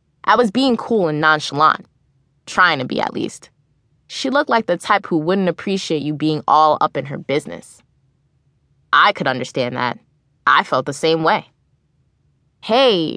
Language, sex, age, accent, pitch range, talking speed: English, female, 20-39, American, 145-205 Hz, 165 wpm